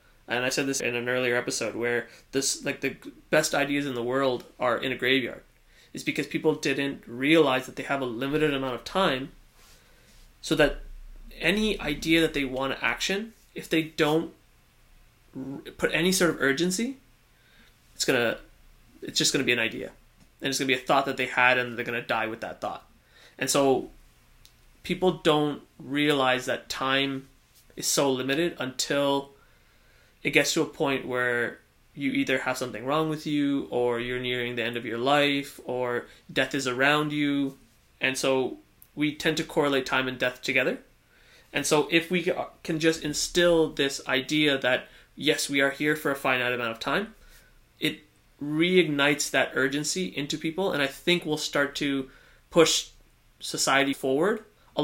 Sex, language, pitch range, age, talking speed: male, English, 130-155 Hz, 20-39, 175 wpm